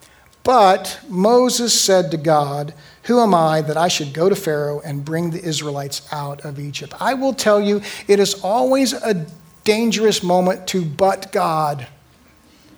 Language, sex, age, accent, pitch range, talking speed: English, male, 50-69, American, 160-210 Hz, 160 wpm